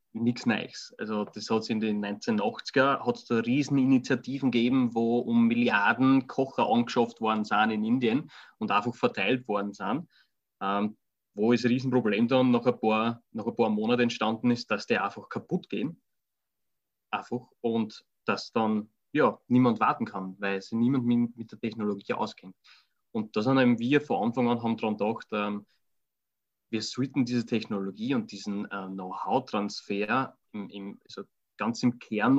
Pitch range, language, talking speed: 110-130 Hz, German, 155 wpm